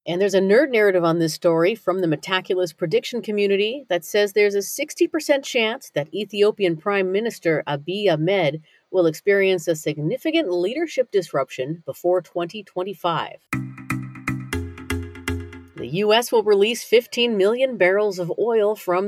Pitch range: 160-210 Hz